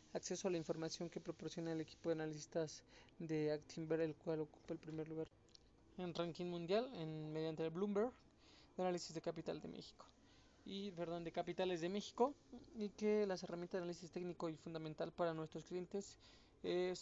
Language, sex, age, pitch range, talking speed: Spanish, male, 20-39, 160-190 Hz, 175 wpm